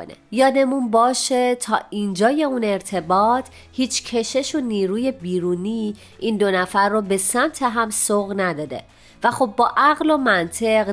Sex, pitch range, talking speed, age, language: female, 180-240 Hz, 145 wpm, 30-49, Persian